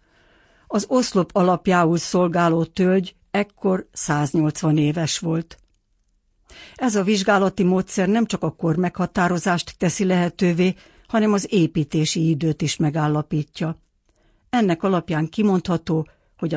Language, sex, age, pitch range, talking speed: Hungarian, female, 60-79, 155-185 Hz, 110 wpm